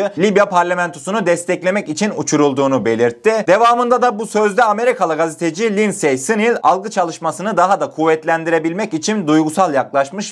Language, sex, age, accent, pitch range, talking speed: Turkish, male, 30-49, native, 155-210 Hz, 130 wpm